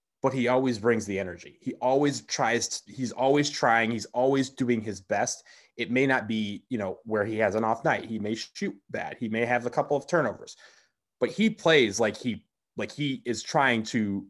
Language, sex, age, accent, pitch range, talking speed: English, male, 30-49, American, 105-130 Hz, 215 wpm